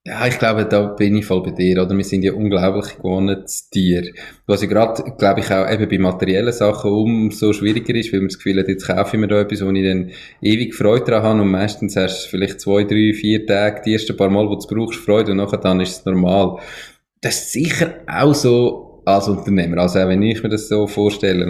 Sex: male